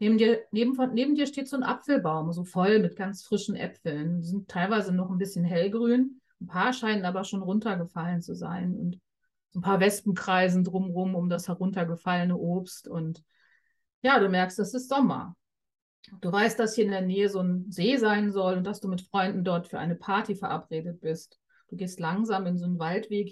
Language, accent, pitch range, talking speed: German, German, 180-220 Hz, 200 wpm